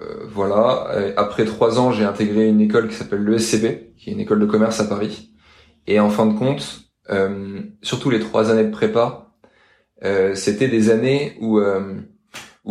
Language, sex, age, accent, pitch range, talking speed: French, male, 20-39, French, 105-115 Hz, 175 wpm